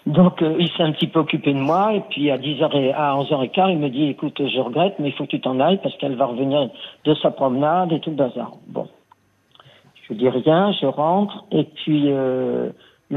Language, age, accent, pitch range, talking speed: French, 50-69, French, 140-175 Hz, 225 wpm